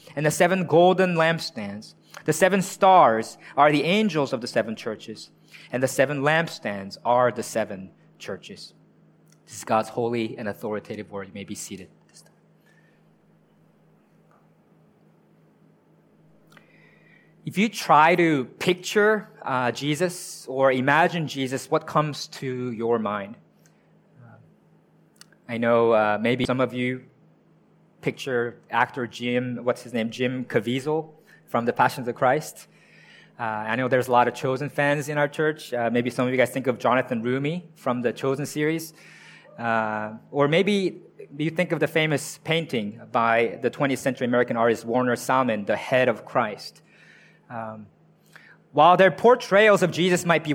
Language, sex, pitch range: English, male, 120-170 Hz